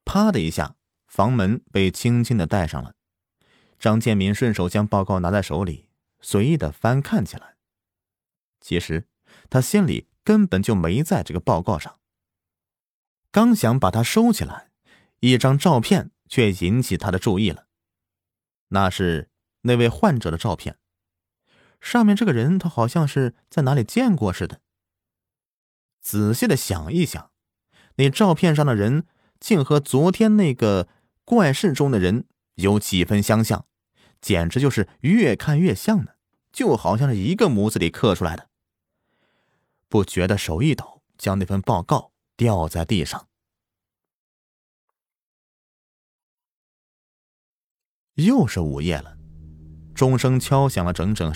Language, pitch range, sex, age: Chinese, 90-135 Hz, male, 30-49